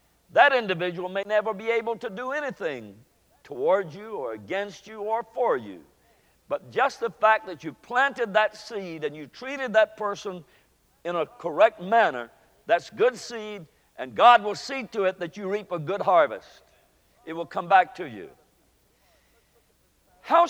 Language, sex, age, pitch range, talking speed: English, male, 60-79, 160-225 Hz, 165 wpm